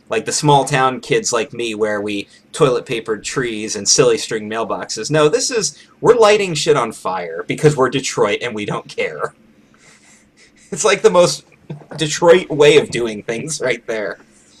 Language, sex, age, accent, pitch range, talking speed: English, male, 30-49, American, 120-170 Hz, 175 wpm